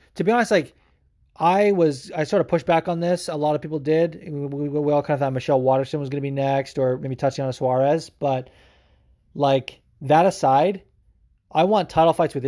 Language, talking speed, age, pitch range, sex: English, 215 wpm, 20-39, 125-165 Hz, male